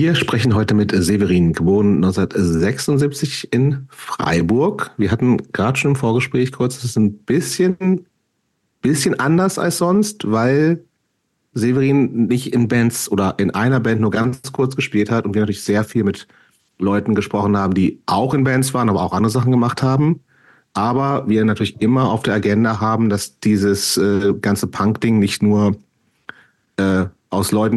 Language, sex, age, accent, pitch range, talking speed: German, male, 40-59, German, 105-130 Hz, 165 wpm